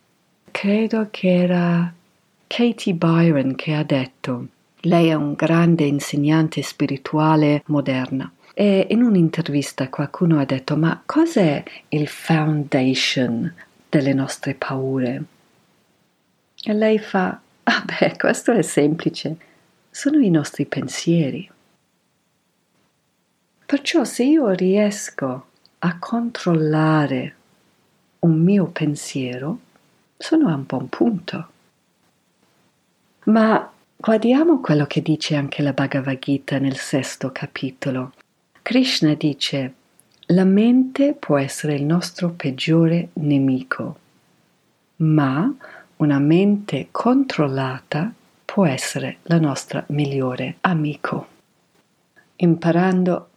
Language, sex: Italian, female